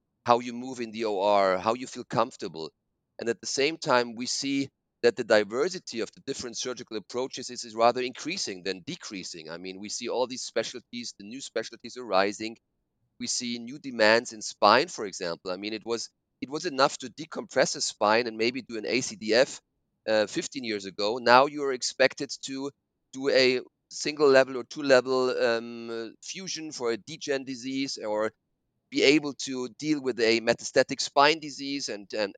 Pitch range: 115-140 Hz